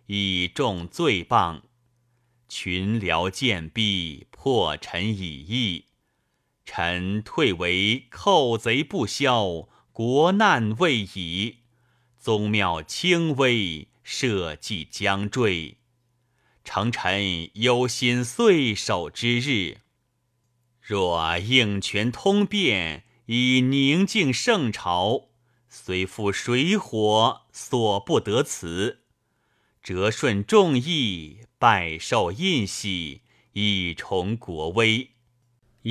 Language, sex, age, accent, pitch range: Chinese, male, 30-49, native, 100-130 Hz